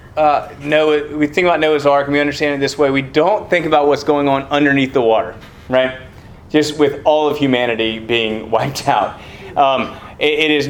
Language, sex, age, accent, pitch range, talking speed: English, male, 30-49, American, 135-155 Hz, 195 wpm